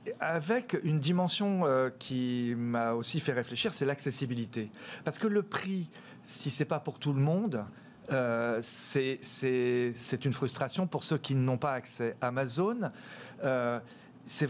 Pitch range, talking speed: 125-170 Hz, 140 wpm